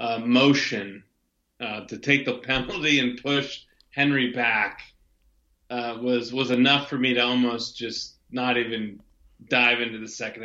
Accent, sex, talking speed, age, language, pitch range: American, male, 150 wpm, 30-49, English, 115-130 Hz